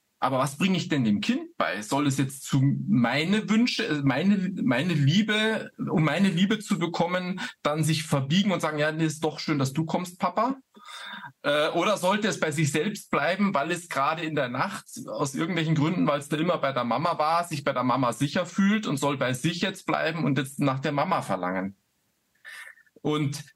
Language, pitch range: German, 135-180 Hz